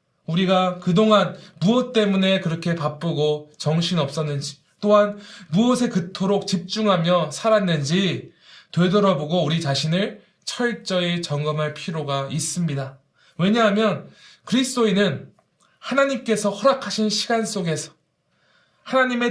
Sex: male